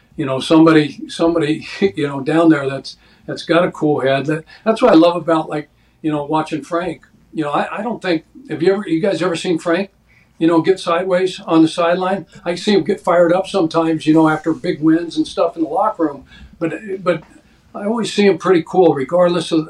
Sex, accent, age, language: male, American, 50-69, English